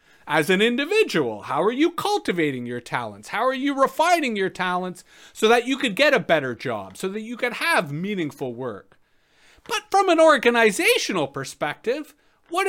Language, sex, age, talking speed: English, male, 40-59, 170 wpm